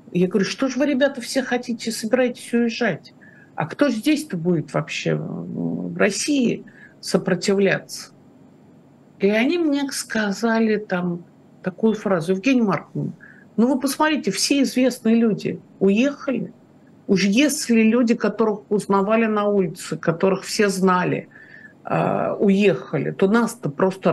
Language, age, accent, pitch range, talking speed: Russian, 50-69, native, 190-245 Hz, 120 wpm